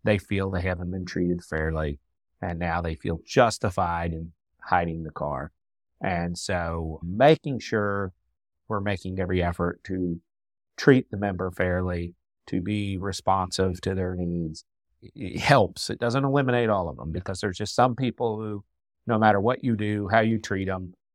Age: 40-59